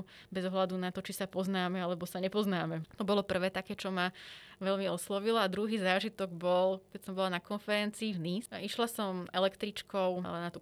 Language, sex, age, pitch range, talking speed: Slovak, female, 20-39, 180-210 Hz, 190 wpm